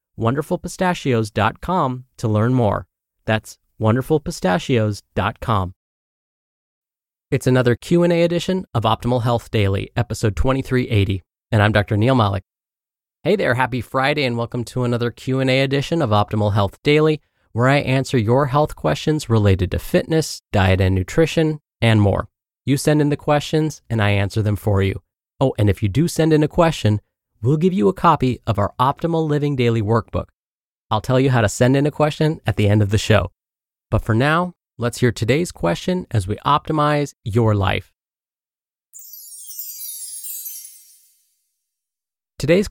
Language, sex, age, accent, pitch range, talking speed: English, male, 20-39, American, 105-140 Hz, 150 wpm